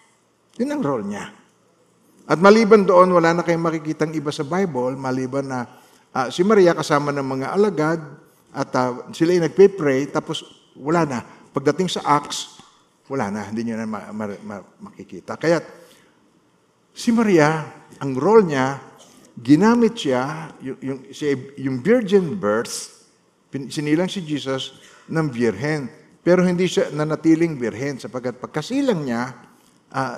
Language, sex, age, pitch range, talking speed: Filipino, male, 50-69, 130-185 Hz, 135 wpm